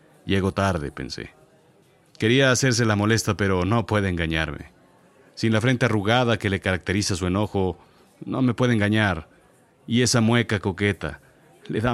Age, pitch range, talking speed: 40-59, 85-110 Hz, 150 wpm